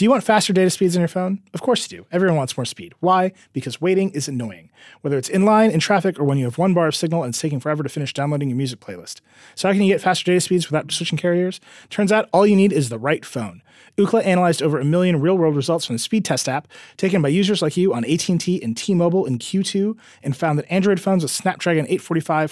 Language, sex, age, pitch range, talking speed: English, male, 30-49, 135-185 Hz, 260 wpm